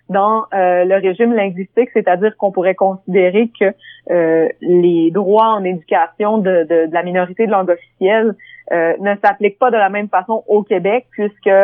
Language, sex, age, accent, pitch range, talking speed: French, female, 30-49, Canadian, 175-215 Hz, 175 wpm